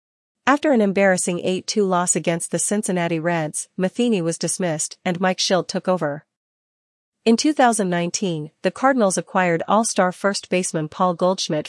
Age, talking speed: 40-59, 140 wpm